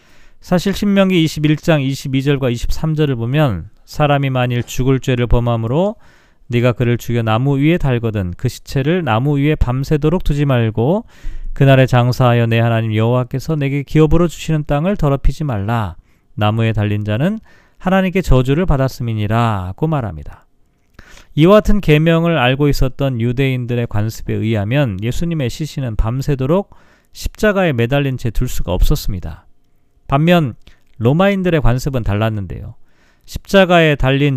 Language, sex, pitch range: Korean, male, 115-155 Hz